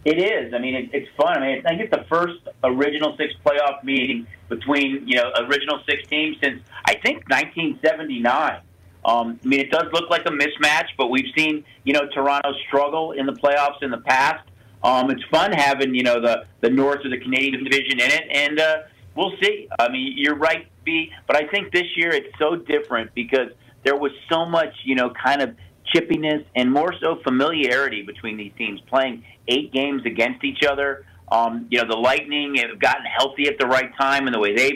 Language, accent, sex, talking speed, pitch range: English, American, male, 205 wpm, 125-150 Hz